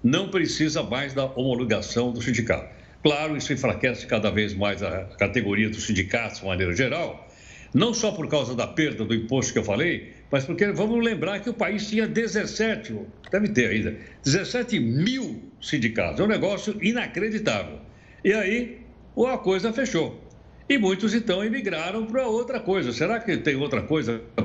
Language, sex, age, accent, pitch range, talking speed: Portuguese, male, 60-79, Brazilian, 120-205 Hz, 165 wpm